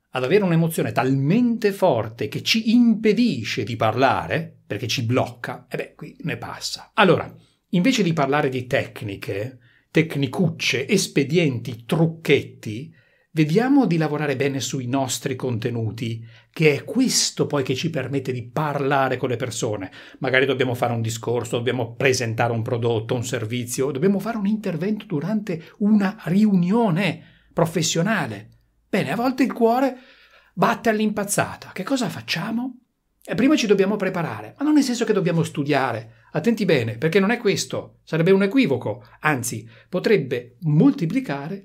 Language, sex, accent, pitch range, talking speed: Italian, male, native, 130-200 Hz, 145 wpm